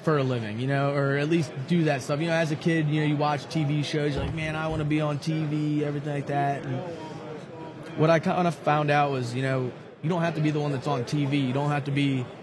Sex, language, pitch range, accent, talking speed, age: male, English, 135-155 Hz, American, 285 wpm, 20-39